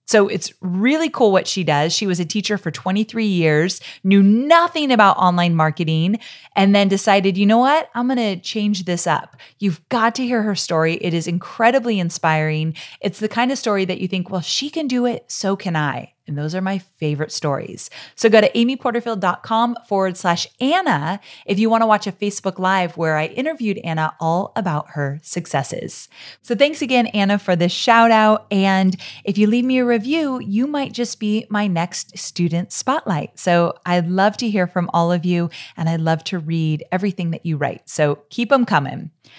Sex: female